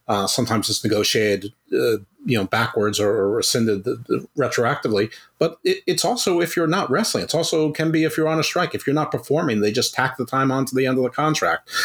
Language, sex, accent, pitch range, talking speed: English, male, American, 110-150 Hz, 235 wpm